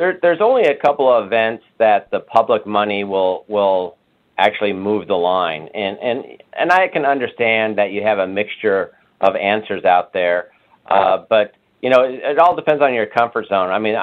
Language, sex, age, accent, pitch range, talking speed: English, male, 50-69, American, 105-130 Hz, 195 wpm